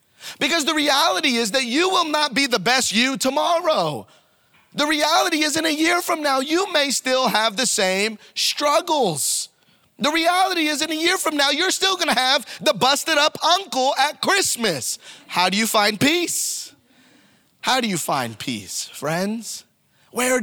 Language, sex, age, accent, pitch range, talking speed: English, male, 30-49, American, 185-290 Hz, 175 wpm